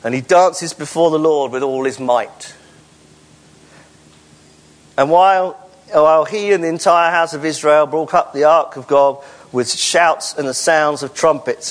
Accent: British